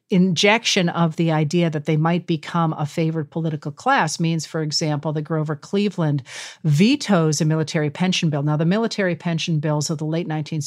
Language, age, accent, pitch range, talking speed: English, 50-69, American, 155-190 Hz, 180 wpm